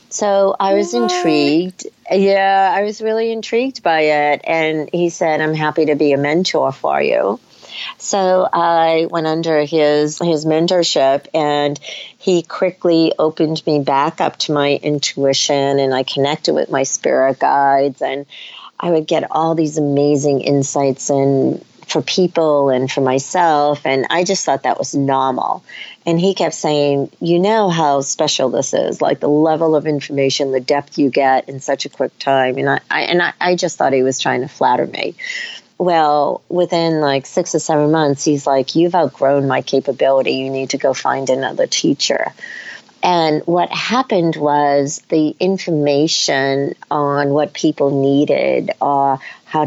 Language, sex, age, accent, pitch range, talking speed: English, female, 40-59, American, 140-180 Hz, 165 wpm